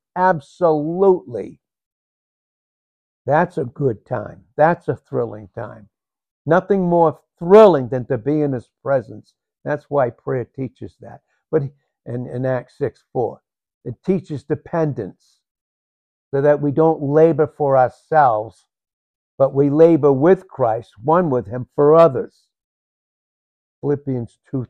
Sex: male